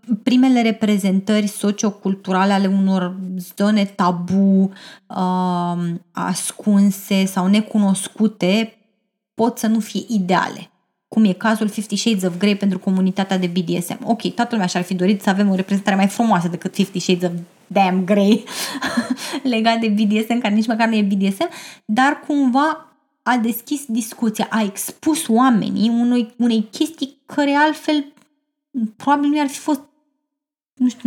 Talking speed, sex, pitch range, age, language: 140 wpm, female, 200-255 Hz, 20-39, Romanian